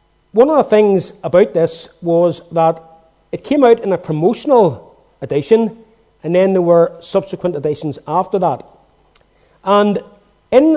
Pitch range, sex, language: 155-210 Hz, male, English